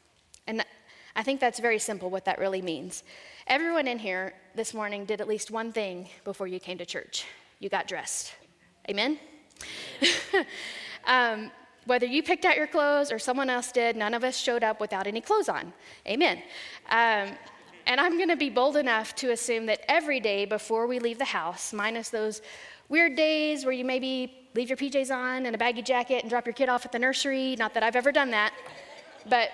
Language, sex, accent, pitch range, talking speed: English, female, American, 210-255 Hz, 195 wpm